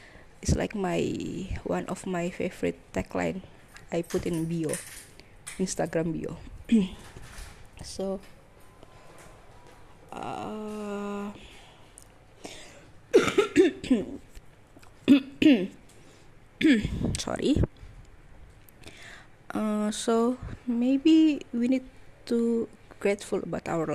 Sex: female